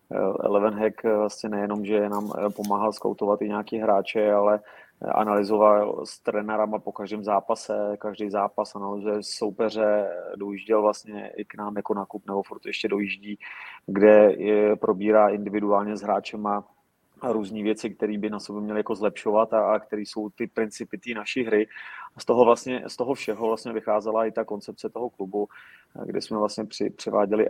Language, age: Czech, 30-49